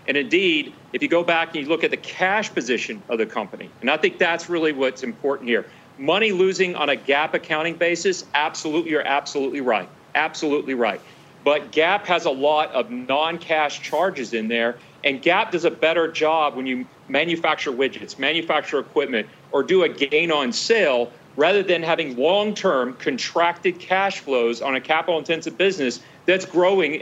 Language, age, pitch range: English, 40-59, 155-190 Hz